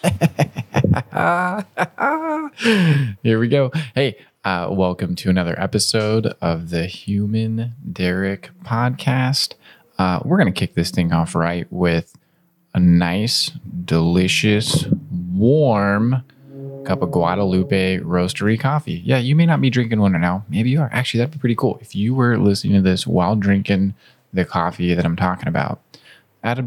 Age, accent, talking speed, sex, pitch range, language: 20-39, American, 145 wpm, male, 90-125 Hz, English